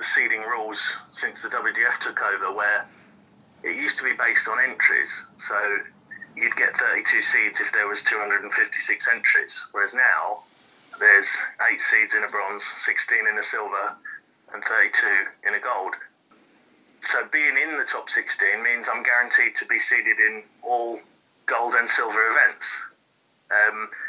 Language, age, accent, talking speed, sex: English, 30-49, British, 155 wpm, male